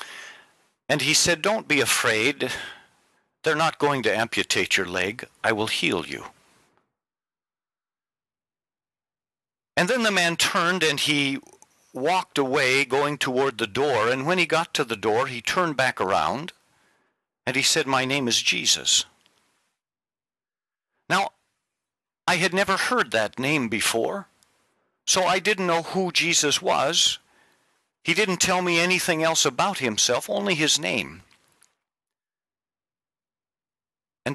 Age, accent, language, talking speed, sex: 50-69, American, English, 130 wpm, male